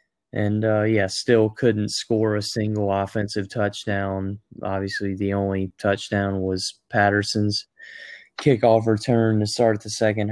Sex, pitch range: male, 100-115 Hz